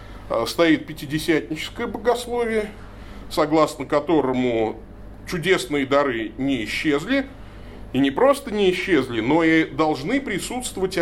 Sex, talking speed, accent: male, 100 wpm, native